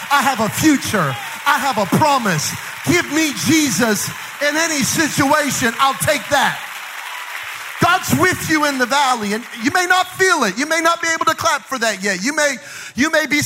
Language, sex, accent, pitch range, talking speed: English, male, American, 205-290 Hz, 190 wpm